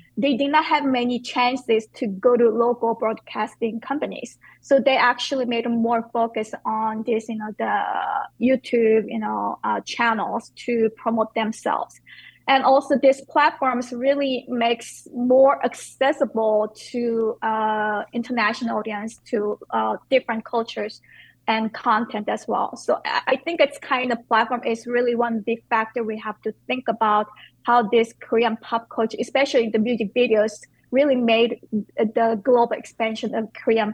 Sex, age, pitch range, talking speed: female, 20-39, 220-250 Hz, 150 wpm